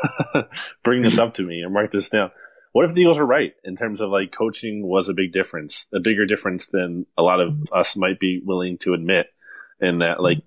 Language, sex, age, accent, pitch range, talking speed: English, male, 20-39, American, 95-125 Hz, 230 wpm